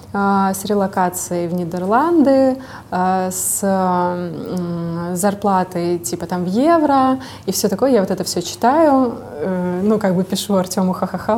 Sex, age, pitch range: female, 20-39, 180-225 Hz